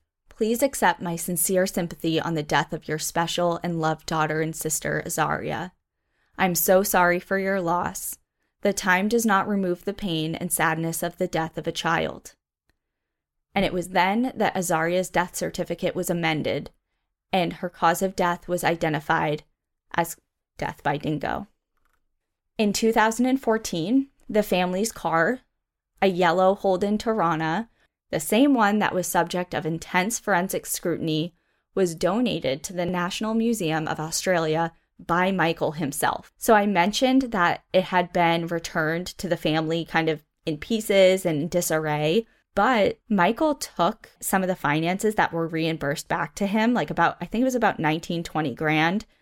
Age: 10-29